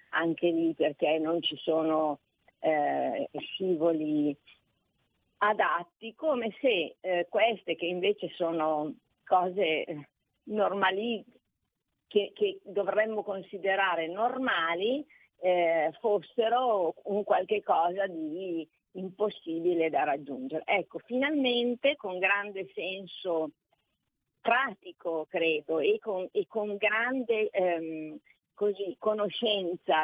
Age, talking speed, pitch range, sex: 50-69, 90 wpm, 165-215 Hz, female